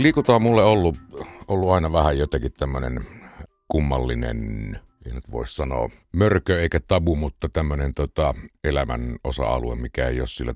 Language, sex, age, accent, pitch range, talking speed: Finnish, male, 50-69, native, 65-85 Hz, 140 wpm